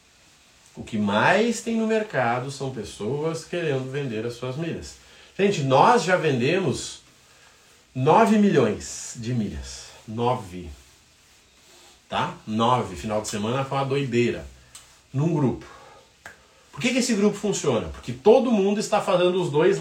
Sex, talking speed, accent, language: male, 140 wpm, Brazilian, Portuguese